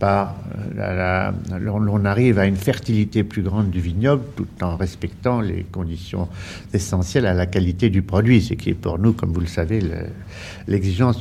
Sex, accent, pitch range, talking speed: male, French, 95-125 Hz, 165 wpm